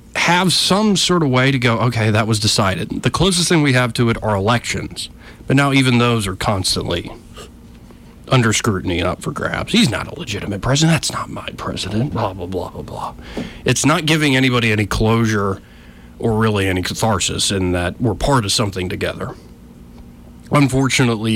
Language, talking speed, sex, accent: English, 180 wpm, male, American